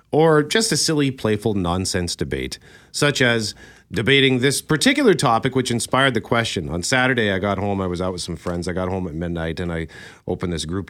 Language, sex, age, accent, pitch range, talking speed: English, male, 40-59, American, 100-160 Hz, 210 wpm